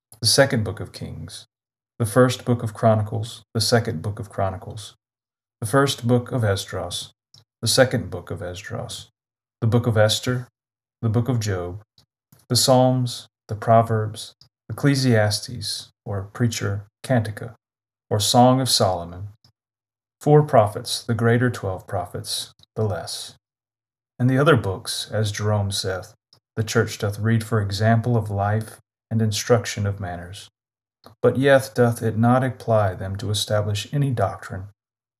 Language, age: English, 40-59